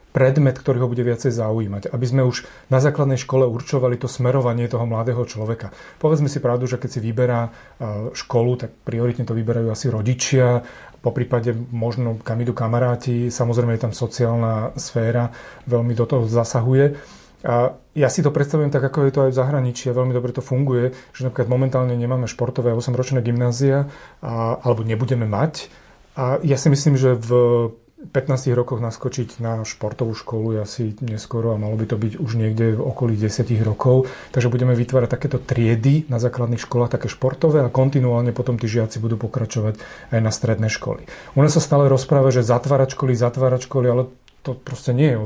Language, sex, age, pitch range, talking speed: Slovak, male, 30-49, 120-130 Hz, 180 wpm